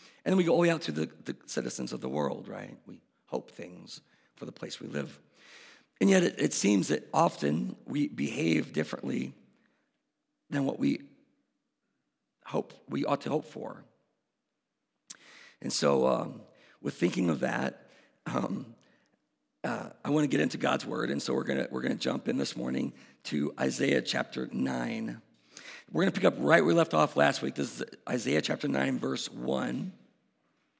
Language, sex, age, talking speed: English, male, 50-69, 180 wpm